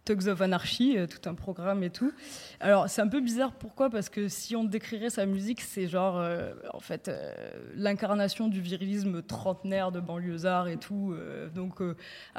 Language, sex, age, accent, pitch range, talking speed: French, female, 20-39, French, 180-205 Hz, 185 wpm